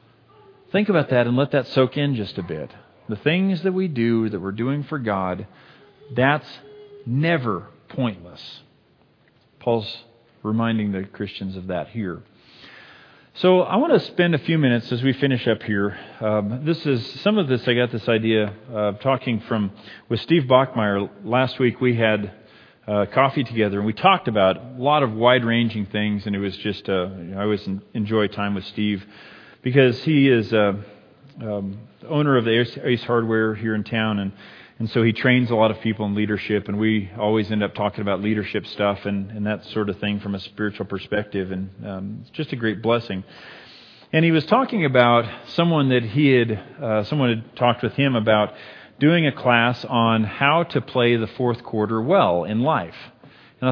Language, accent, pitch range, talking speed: English, American, 105-135 Hz, 190 wpm